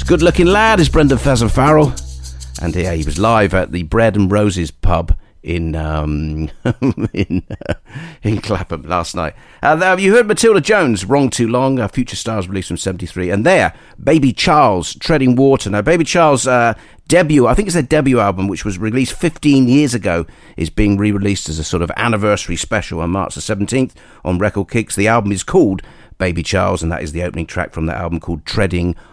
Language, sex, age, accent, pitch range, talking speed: English, male, 50-69, British, 85-125 Hz, 200 wpm